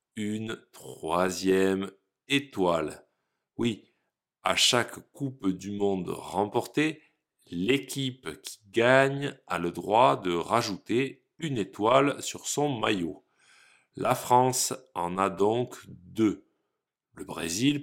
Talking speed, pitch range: 105 wpm, 95-135 Hz